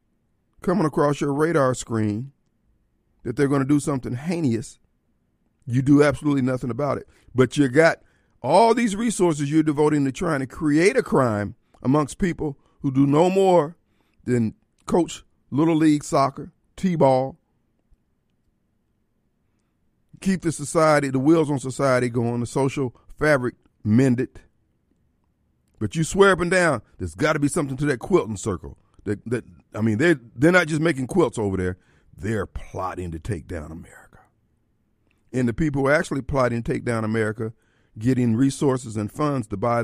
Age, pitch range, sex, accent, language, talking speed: 50-69, 110-145 Hz, male, American, English, 160 wpm